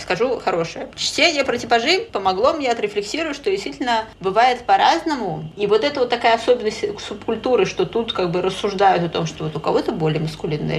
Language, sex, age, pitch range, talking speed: Russian, female, 20-39, 170-225 Hz, 180 wpm